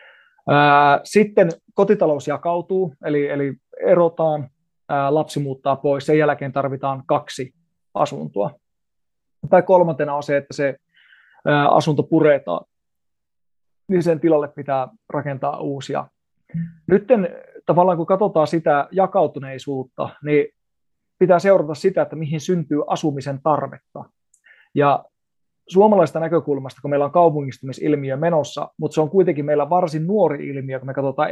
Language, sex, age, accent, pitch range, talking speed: Finnish, male, 30-49, native, 140-170 Hz, 120 wpm